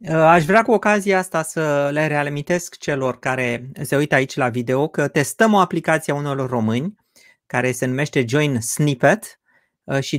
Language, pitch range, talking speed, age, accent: Romanian, 130-170 Hz, 165 wpm, 30-49, native